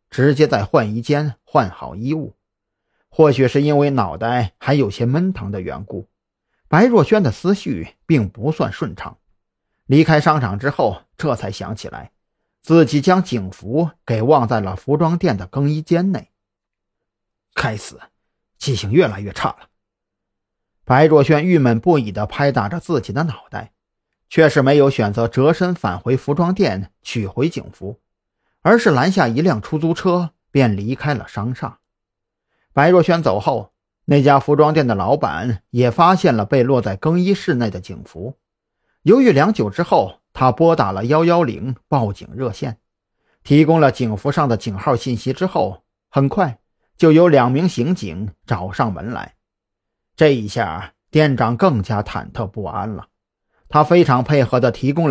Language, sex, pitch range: Chinese, male, 105-155 Hz